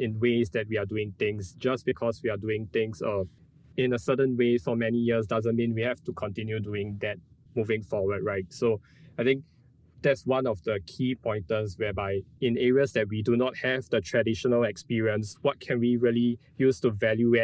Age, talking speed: 20-39, 205 wpm